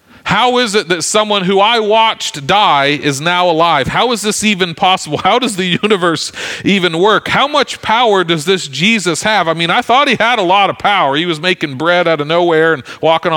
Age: 40-59